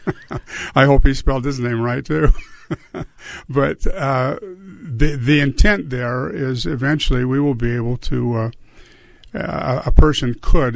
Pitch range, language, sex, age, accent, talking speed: 120-145 Hz, English, male, 50-69, American, 145 wpm